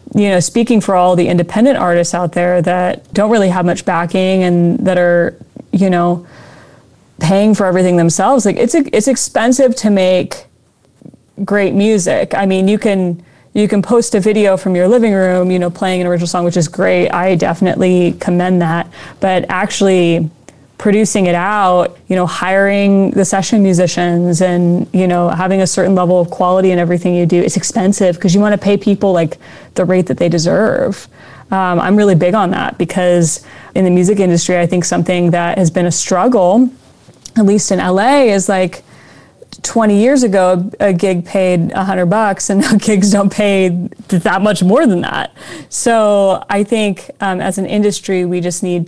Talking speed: 185 wpm